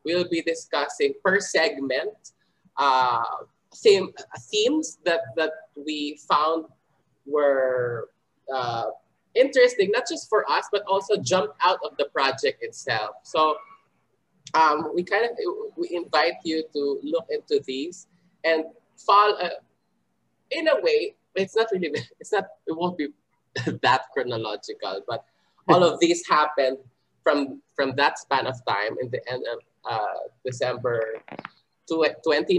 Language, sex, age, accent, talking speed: Filipino, male, 20-39, native, 135 wpm